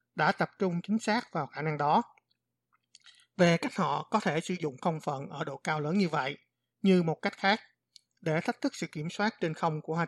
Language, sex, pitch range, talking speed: Vietnamese, male, 150-190 Hz, 225 wpm